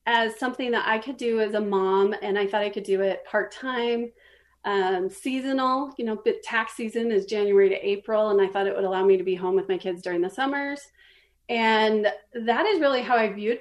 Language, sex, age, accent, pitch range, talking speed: English, female, 30-49, American, 200-240 Hz, 215 wpm